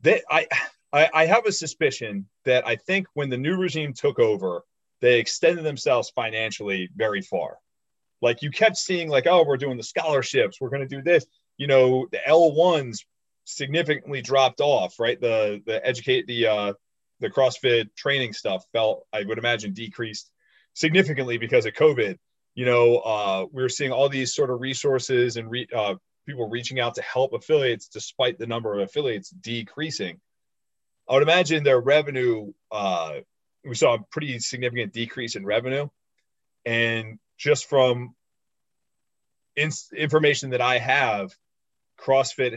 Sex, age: male, 30-49